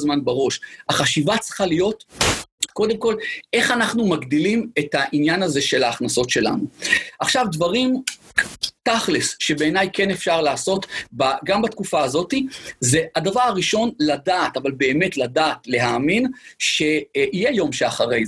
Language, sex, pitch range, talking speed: Hebrew, male, 160-220 Hz, 125 wpm